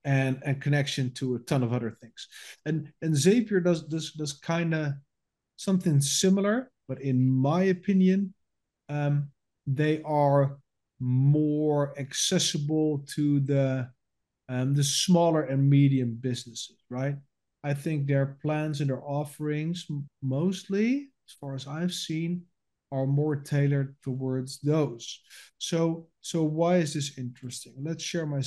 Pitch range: 135-170 Hz